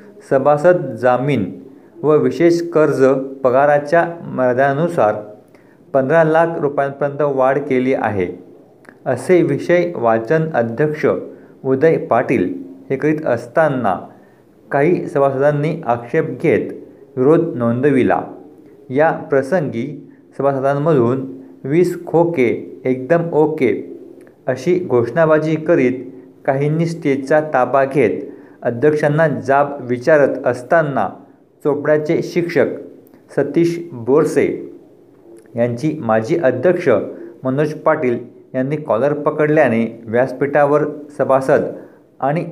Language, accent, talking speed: Marathi, native, 85 wpm